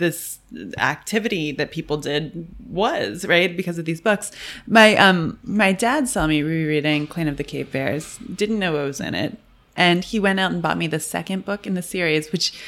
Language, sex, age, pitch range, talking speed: English, female, 20-39, 155-210 Hz, 205 wpm